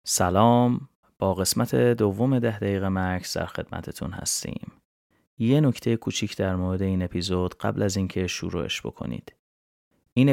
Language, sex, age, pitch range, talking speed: Persian, male, 30-49, 90-110 Hz, 135 wpm